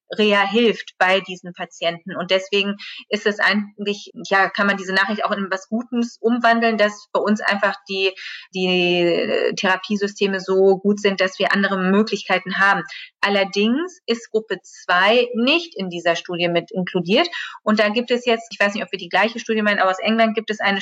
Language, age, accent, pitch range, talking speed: German, 30-49, German, 190-220 Hz, 185 wpm